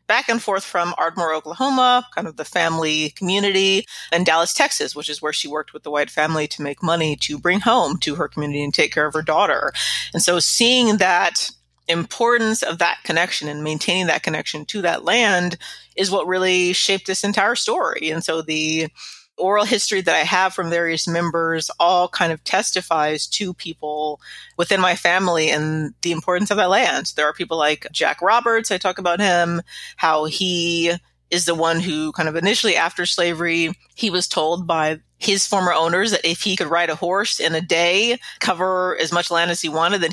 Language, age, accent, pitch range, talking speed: English, 30-49, American, 160-195 Hz, 195 wpm